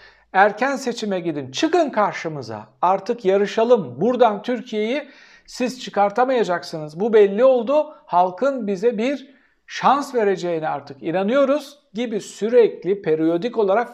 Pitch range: 180-250 Hz